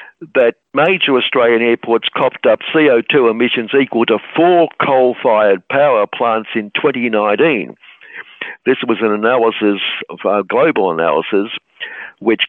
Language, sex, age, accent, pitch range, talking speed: English, male, 60-79, British, 105-135 Hz, 120 wpm